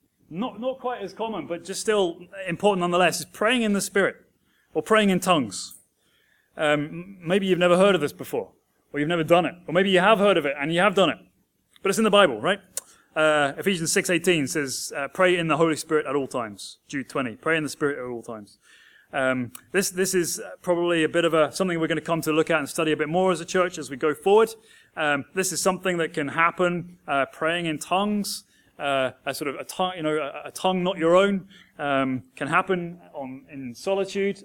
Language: English